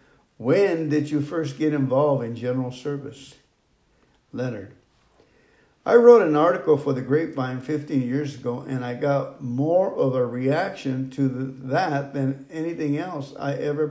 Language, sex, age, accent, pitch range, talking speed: English, male, 50-69, American, 135-160 Hz, 145 wpm